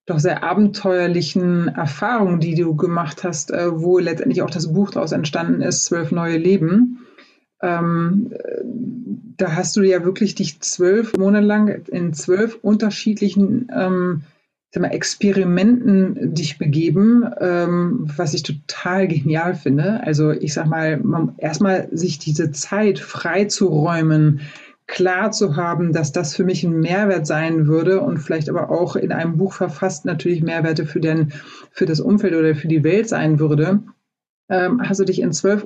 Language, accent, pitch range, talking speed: German, German, 165-205 Hz, 145 wpm